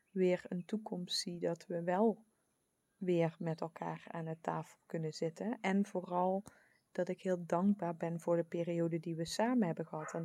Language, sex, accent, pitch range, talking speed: English, female, Dutch, 165-195 Hz, 180 wpm